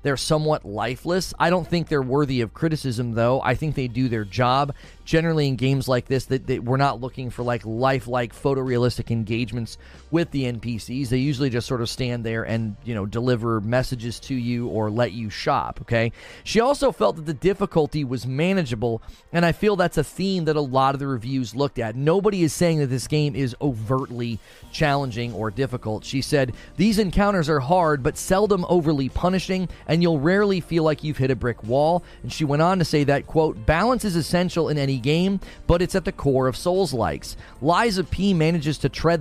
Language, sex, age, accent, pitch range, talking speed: English, male, 30-49, American, 120-165 Hz, 205 wpm